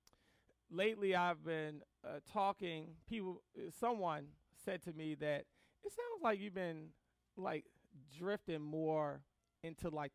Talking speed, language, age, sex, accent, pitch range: 130 wpm, English, 30-49, male, American, 145-200 Hz